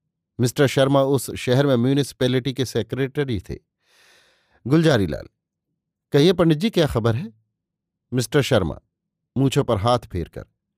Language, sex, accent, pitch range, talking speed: Hindi, male, native, 115-150 Hz, 120 wpm